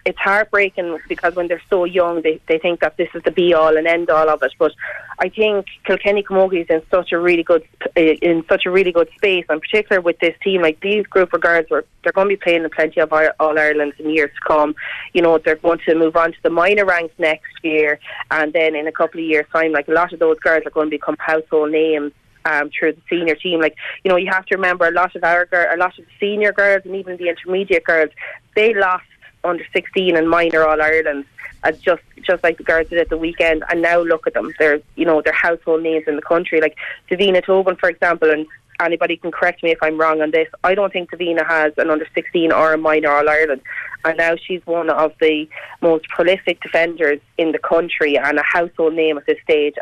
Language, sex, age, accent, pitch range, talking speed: English, female, 20-39, Irish, 155-180 Hz, 240 wpm